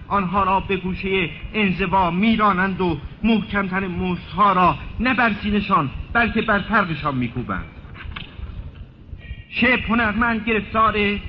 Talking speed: 100 wpm